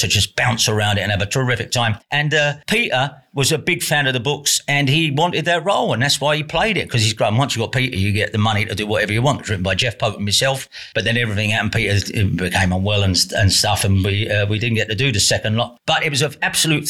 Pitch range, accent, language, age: 110-145 Hz, British, English, 40-59